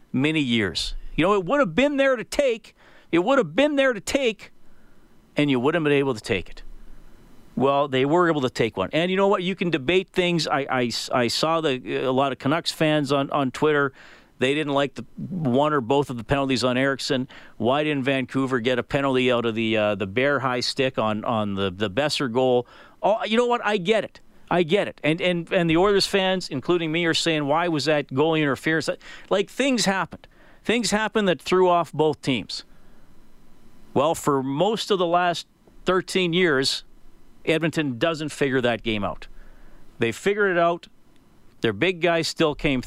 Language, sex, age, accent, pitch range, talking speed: English, male, 40-59, American, 130-175 Hz, 205 wpm